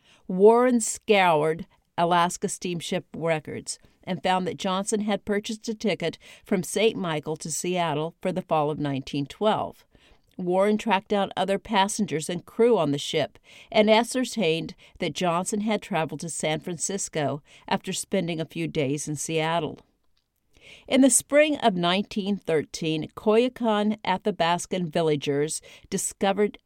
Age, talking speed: 50-69, 130 wpm